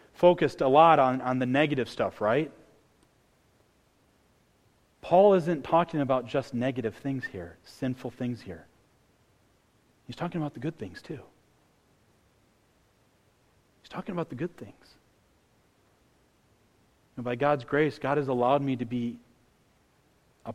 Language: English